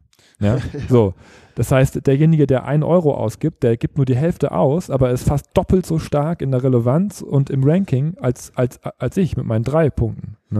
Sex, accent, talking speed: male, German, 180 wpm